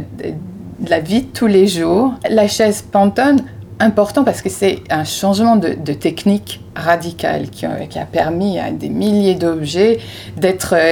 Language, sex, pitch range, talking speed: French, female, 150-195 Hz, 160 wpm